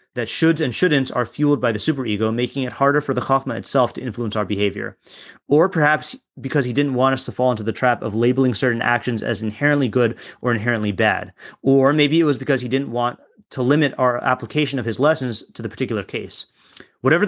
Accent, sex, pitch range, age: American, male, 115-140 Hz, 30-49